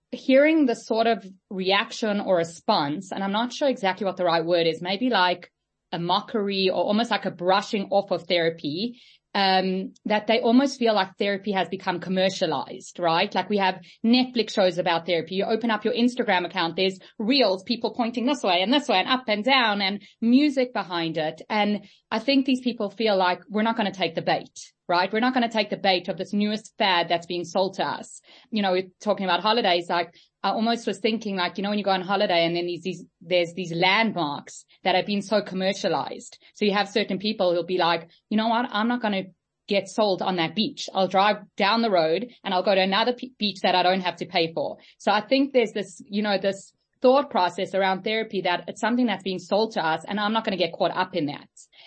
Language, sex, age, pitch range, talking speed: English, female, 30-49, 180-225 Hz, 230 wpm